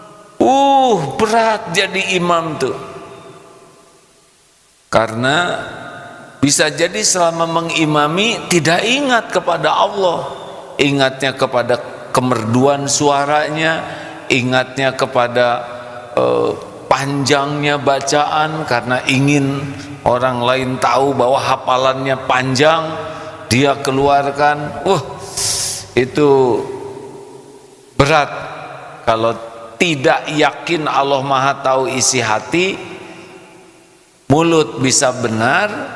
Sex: male